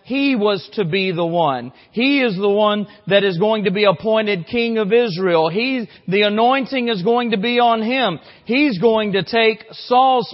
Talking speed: 190 wpm